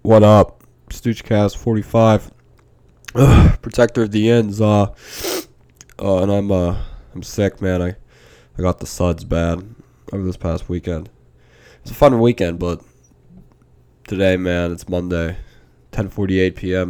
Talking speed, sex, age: 140 wpm, male, 20-39